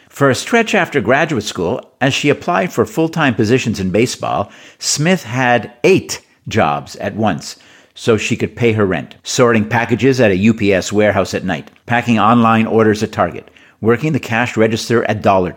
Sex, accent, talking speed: male, American, 175 wpm